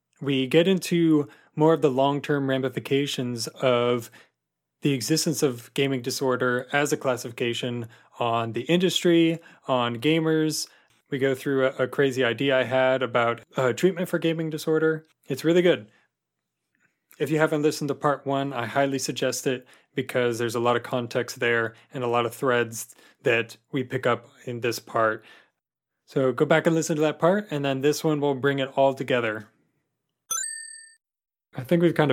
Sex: male